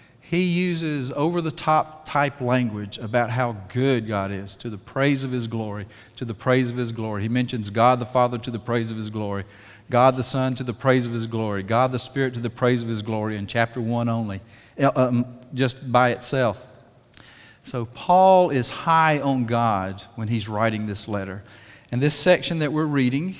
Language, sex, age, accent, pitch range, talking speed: English, male, 40-59, American, 115-140 Hz, 190 wpm